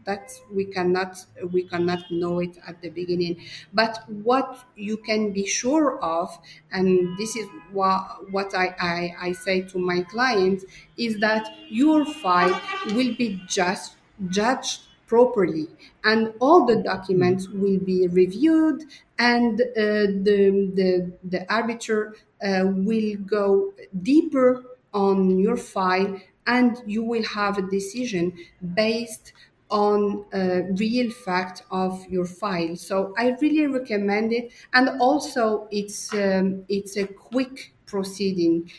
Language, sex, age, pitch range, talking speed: English, female, 50-69, 185-225 Hz, 130 wpm